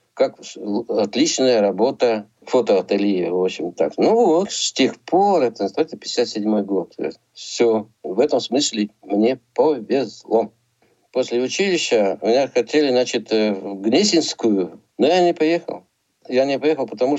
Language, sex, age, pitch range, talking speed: Russian, male, 60-79, 110-160 Hz, 130 wpm